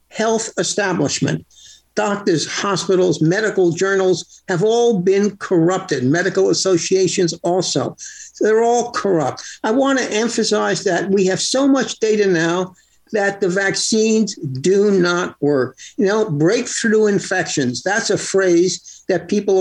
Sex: male